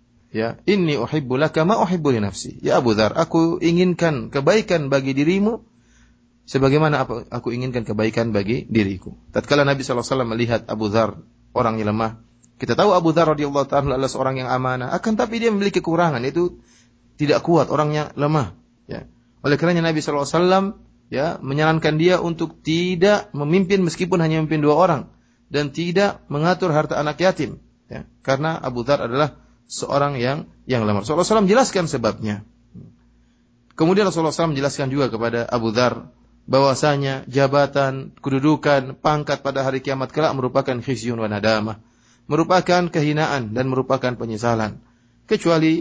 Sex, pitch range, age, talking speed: male, 120-155 Hz, 30-49, 140 wpm